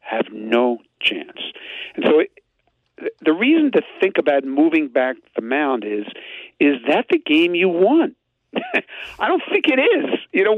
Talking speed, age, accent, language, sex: 160 wpm, 50-69, American, English, male